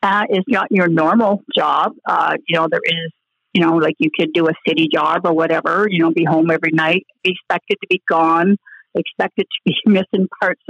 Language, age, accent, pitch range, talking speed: English, 50-69, American, 170-195 Hz, 215 wpm